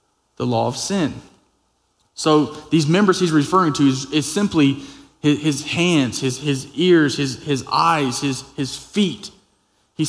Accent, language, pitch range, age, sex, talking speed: American, English, 140-175 Hz, 20-39, male, 155 wpm